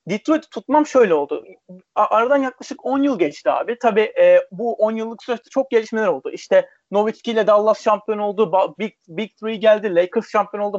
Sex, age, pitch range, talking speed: male, 40-59, 210-275 Hz, 170 wpm